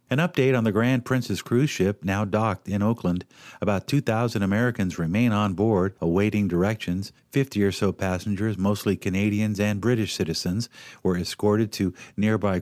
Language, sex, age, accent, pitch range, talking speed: English, male, 50-69, American, 95-120 Hz, 155 wpm